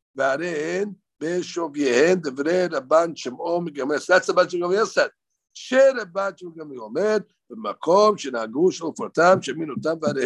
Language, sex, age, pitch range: English, male, 60-79, 145-205 Hz